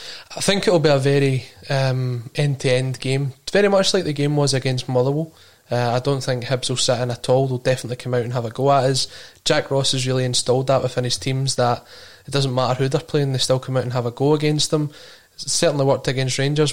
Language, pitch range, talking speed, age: English, 125-140 Hz, 250 wpm, 20-39